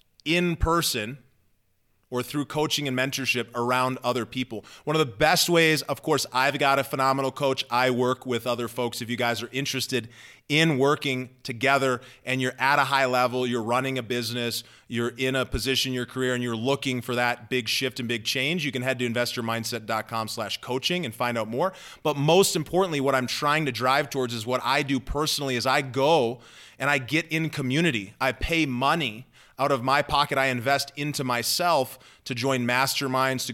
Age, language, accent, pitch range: 30-49, English, American, 120-140 Hz